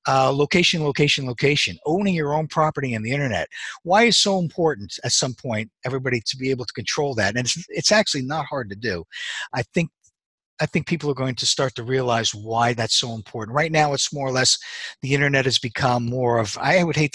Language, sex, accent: English, male, American